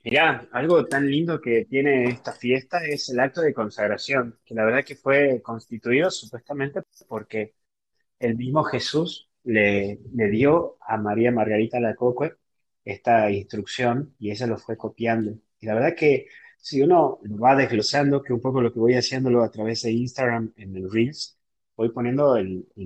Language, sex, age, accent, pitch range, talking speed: Spanish, male, 30-49, Argentinian, 110-135 Hz, 170 wpm